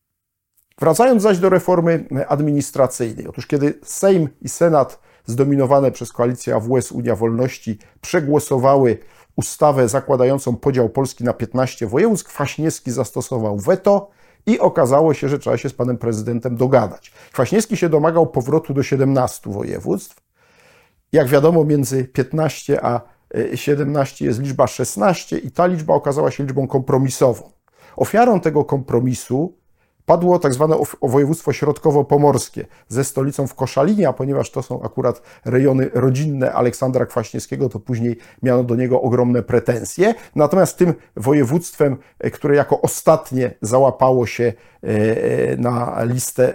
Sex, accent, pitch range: male, native, 120-150 Hz